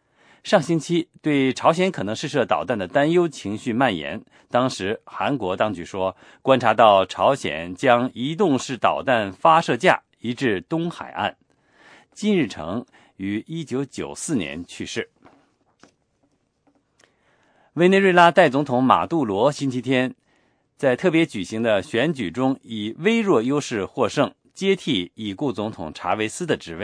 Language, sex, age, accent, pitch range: English, male, 50-69, Chinese, 120-170 Hz